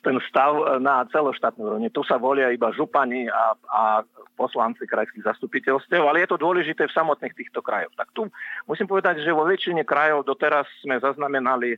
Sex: male